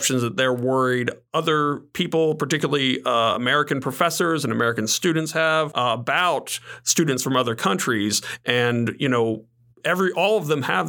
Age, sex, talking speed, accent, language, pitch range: 40-59, male, 150 wpm, American, English, 120-150 Hz